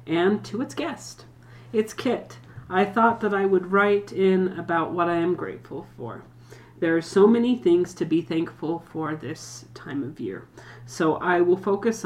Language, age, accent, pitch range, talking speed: English, 40-59, American, 145-180 Hz, 180 wpm